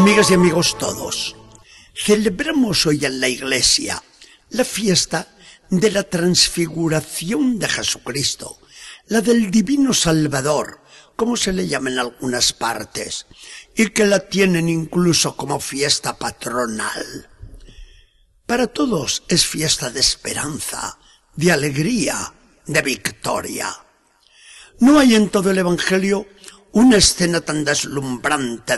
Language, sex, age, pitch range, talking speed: Spanish, male, 50-69, 145-210 Hz, 115 wpm